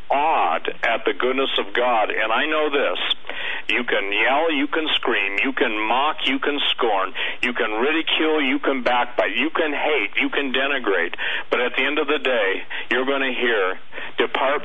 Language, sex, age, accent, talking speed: English, male, 50-69, American, 190 wpm